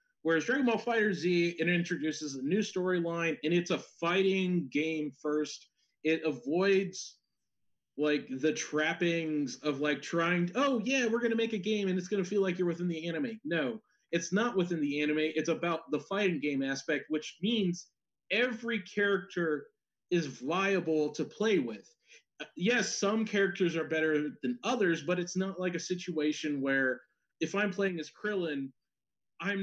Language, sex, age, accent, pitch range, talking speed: English, male, 30-49, American, 155-200 Hz, 165 wpm